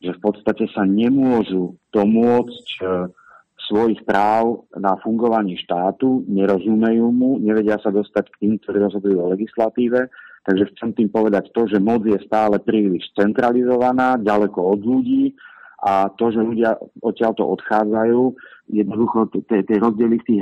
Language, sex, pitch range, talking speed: Slovak, male, 100-115 Hz, 145 wpm